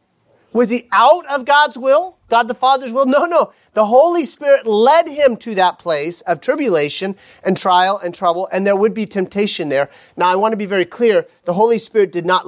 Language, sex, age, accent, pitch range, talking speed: English, male, 40-59, American, 170-235 Hz, 210 wpm